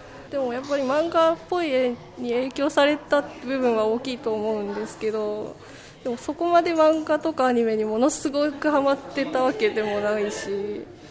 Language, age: Japanese, 20-39